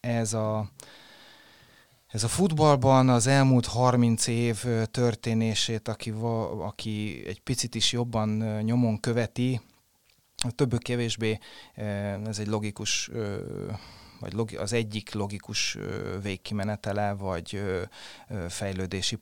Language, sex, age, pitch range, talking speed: Hungarian, male, 30-49, 105-115 Hz, 100 wpm